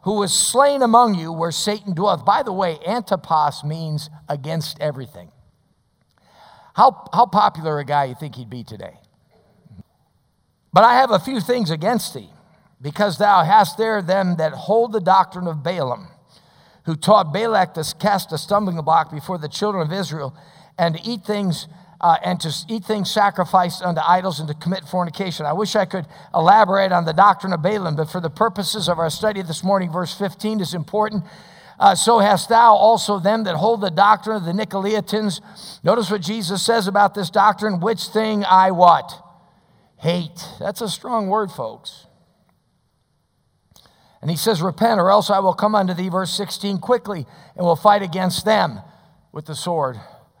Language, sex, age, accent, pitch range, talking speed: English, male, 50-69, American, 165-210 Hz, 175 wpm